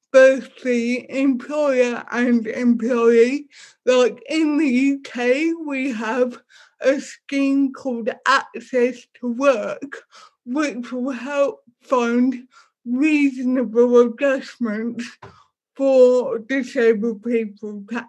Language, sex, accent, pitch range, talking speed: English, female, British, 235-270 Hz, 90 wpm